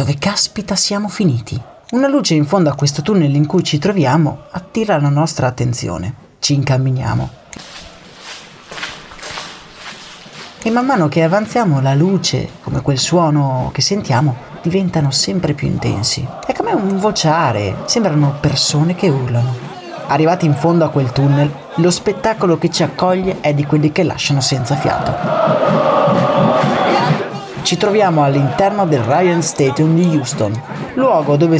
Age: 30-49